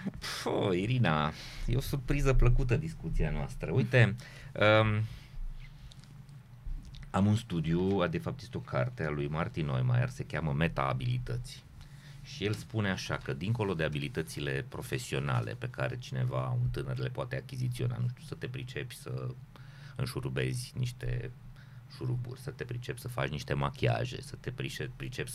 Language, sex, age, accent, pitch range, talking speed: Romanian, male, 30-49, native, 105-135 Hz, 145 wpm